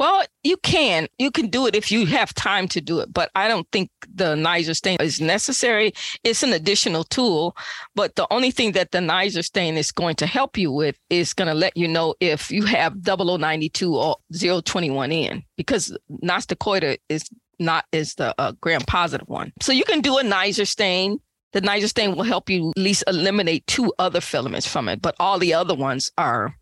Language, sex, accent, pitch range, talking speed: English, female, American, 160-210 Hz, 205 wpm